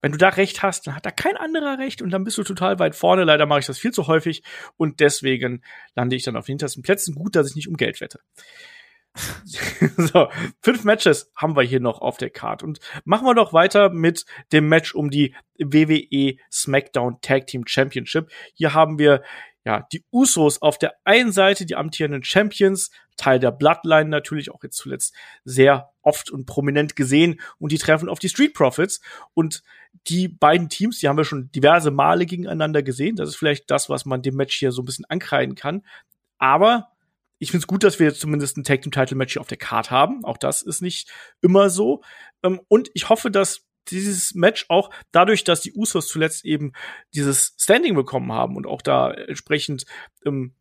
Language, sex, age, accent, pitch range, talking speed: German, male, 40-59, German, 140-190 Hz, 205 wpm